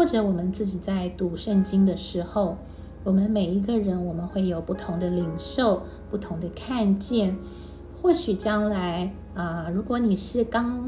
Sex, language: female, Chinese